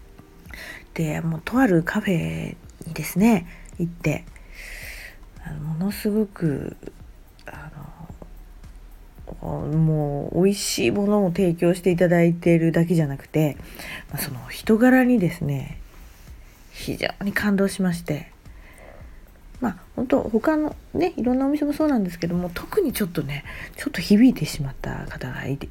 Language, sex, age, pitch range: Japanese, female, 40-59, 135-190 Hz